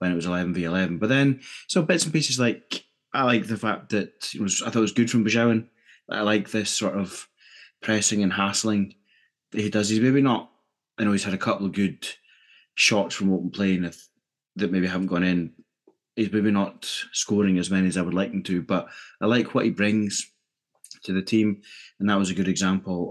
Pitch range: 85-105 Hz